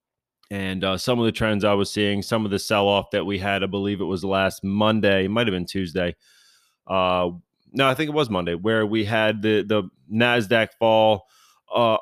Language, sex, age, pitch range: English, male, 20-39, 100-120 Hz